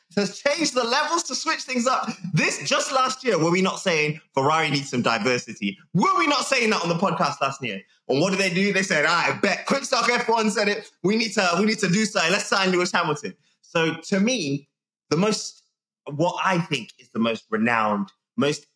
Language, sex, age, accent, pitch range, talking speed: English, male, 20-39, British, 140-195 Hz, 220 wpm